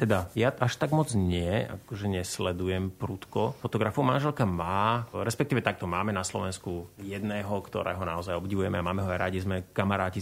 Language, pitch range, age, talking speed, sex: Slovak, 95-110 Hz, 30-49, 160 wpm, male